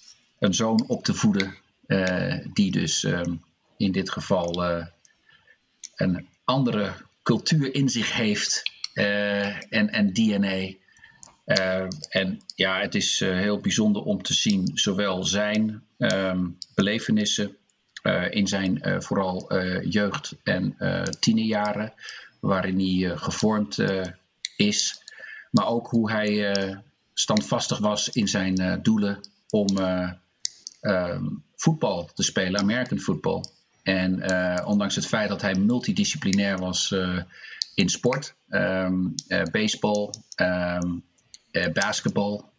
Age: 50-69